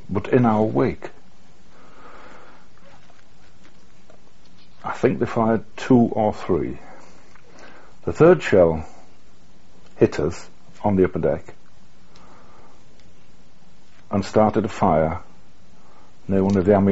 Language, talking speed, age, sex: English, 100 wpm, 60-79, male